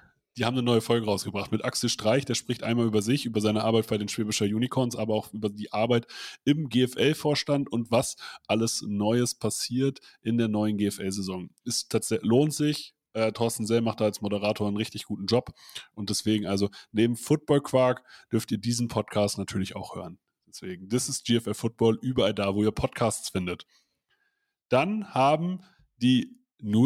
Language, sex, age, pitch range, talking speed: German, male, 30-49, 110-135 Hz, 175 wpm